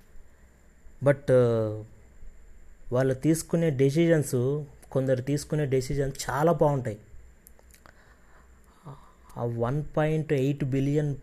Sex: male